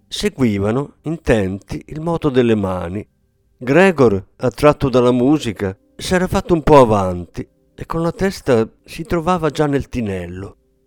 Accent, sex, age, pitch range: native, male, 50-69, 100-140 Hz